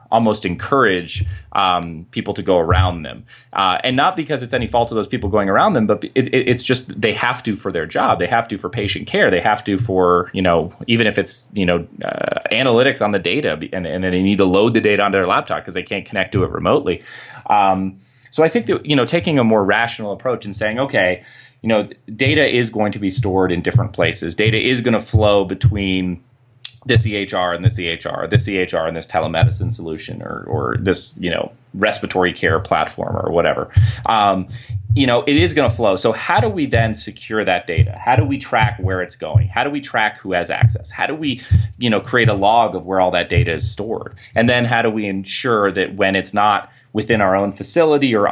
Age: 30-49